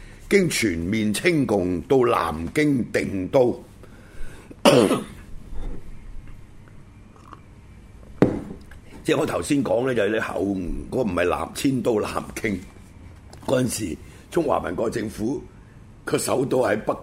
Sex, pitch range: male, 100-140 Hz